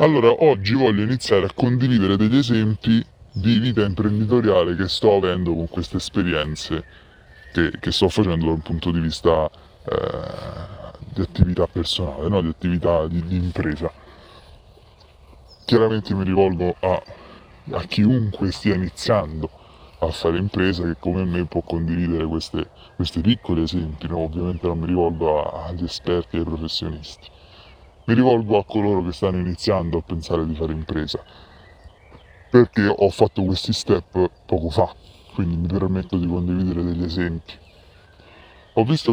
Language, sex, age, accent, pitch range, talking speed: Italian, female, 20-39, native, 85-110 Hz, 145 wpm